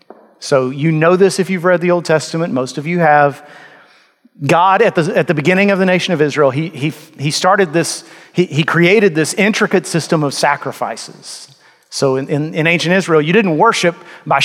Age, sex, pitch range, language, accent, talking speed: 40-59, male, 150-185 Hz, English, American, 200 wpm